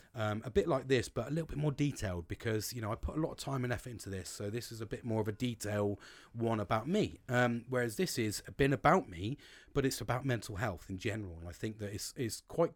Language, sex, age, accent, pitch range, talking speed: English, male, 30-49, British, 100-125 Hz, 275 wpm